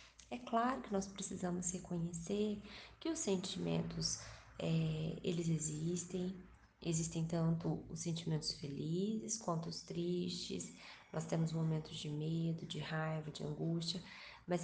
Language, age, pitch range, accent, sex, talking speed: Portuguese, 20-39, 165-195 Hz, Brazilian, female, 120 wpm